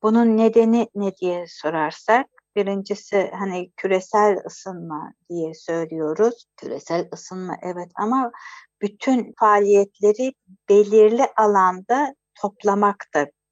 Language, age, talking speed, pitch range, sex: Turkish, 60-79, 95 wpm, 165-205 Hz, female